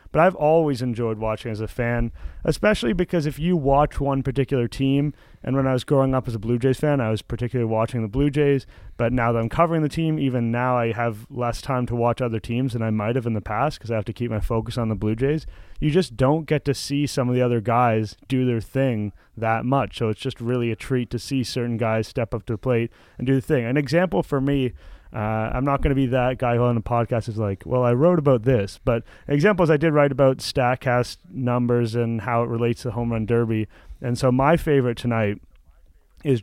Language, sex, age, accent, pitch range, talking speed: English, male, 30-49, American, 115-140 Hz, 245 wpm